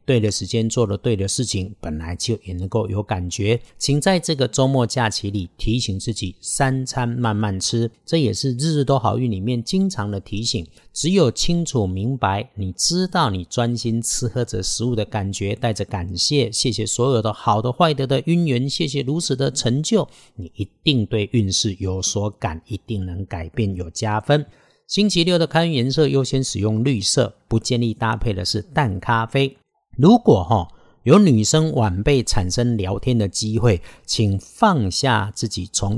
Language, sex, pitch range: Chinese, male, 100-130 Hz